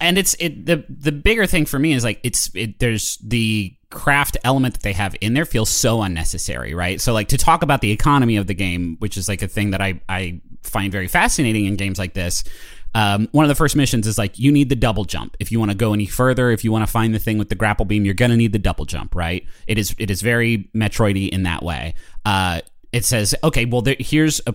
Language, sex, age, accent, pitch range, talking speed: English, male, 30-49, American, 100-130 Hz, 260 wpm